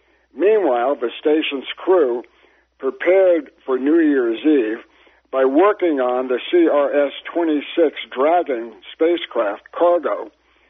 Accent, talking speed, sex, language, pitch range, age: American, 95 wpm, male, English, 130-175 Hz, 60-79